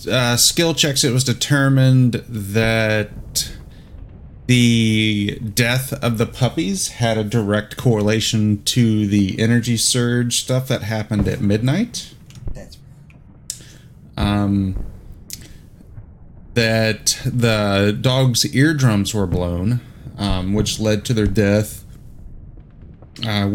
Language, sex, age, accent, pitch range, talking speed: English, male, 30-49, American, 100-125 Hz, 100 wpm